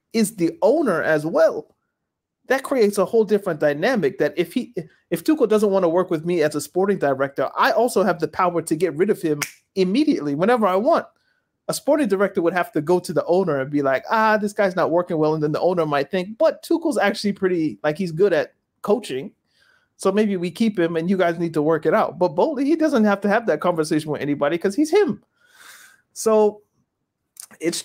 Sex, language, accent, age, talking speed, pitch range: male, English, American, 30-49, 220 wpm, 150-205 Hz